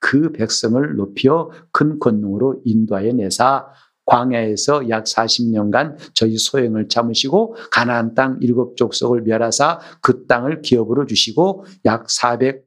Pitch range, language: 120-165 Hz, Korean